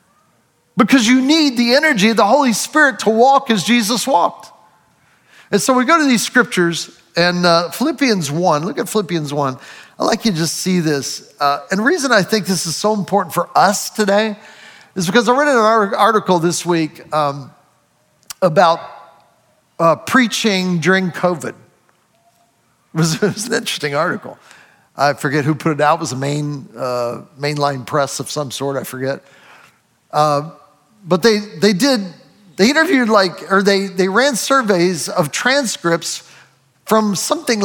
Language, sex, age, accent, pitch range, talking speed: English, male, 50-69, American, 165-225 Hz, 165 wpm